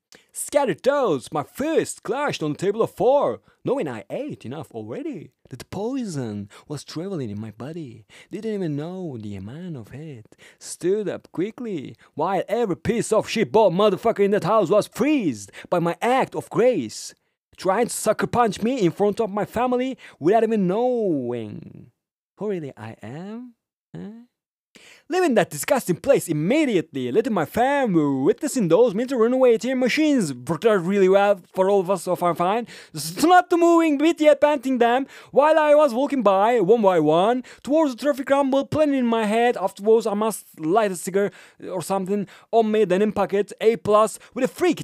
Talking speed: 185 wpm